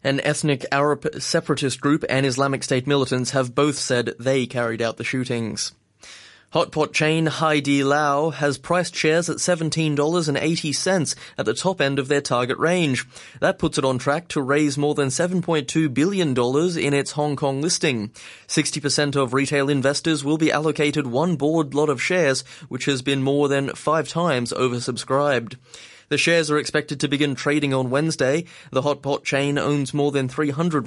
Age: 20-39